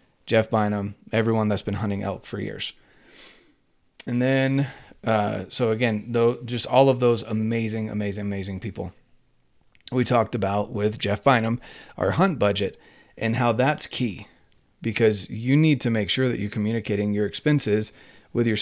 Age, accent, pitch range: 30-49, American, 105-125 Hz